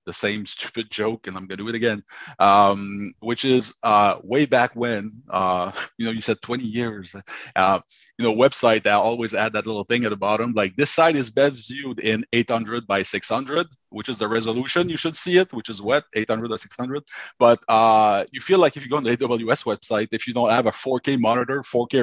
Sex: male